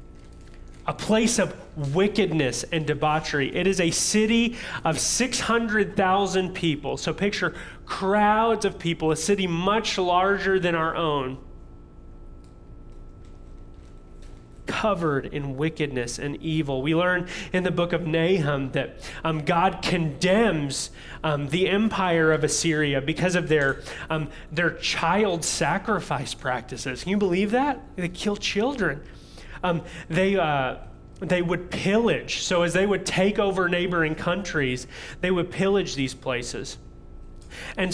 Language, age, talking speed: English, 30-49, 130 wpm